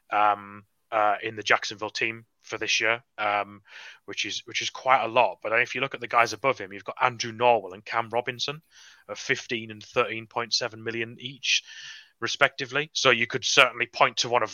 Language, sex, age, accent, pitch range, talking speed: English, male, 30-49, British, 105-120 Hz, 200 wpm